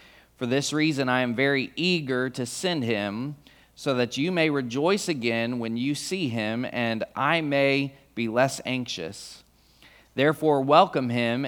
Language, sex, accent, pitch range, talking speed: English, male, American, 120-155 Hz, 150 wpm